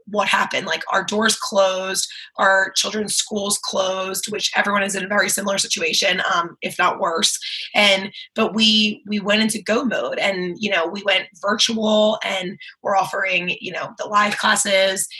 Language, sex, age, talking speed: English, female, 20-39, 175 wpm